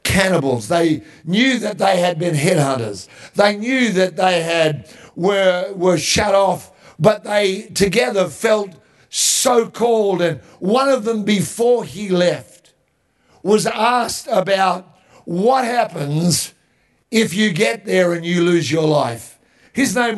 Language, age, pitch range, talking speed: English, 50-69, 155-210 Hz, 135 wpm